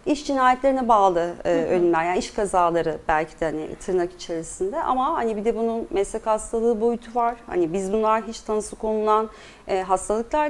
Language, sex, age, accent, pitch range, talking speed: Turkish, female, 40-59, native, 195-250 Hz, 160 wpm